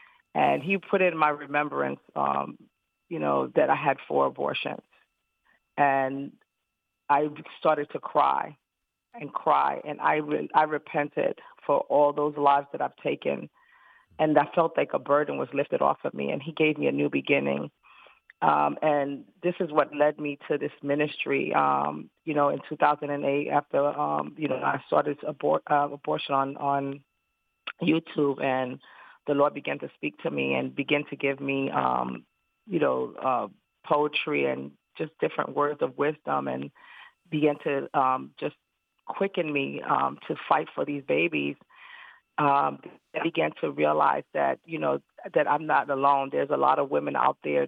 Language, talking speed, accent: English, 170 wpm, American